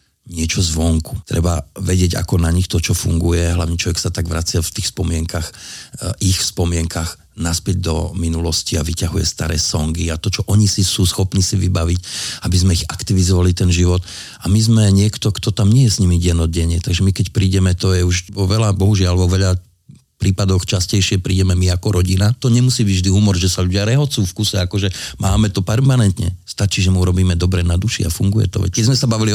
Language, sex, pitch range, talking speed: Slovak, male, 90-105 Hz, 205 wpm